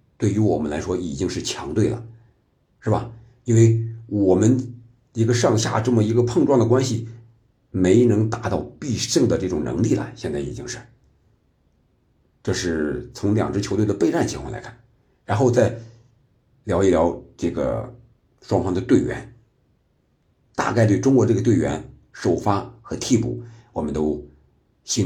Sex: male